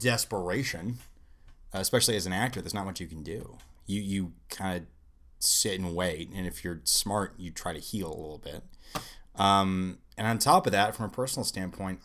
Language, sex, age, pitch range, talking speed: English, male, 30-49, 85-110 Hz, 195 wpm